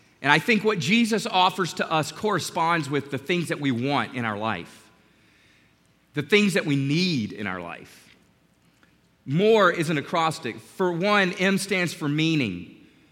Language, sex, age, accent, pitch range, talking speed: English, male, 40-59, American, 150-205 Hz, 165 wpm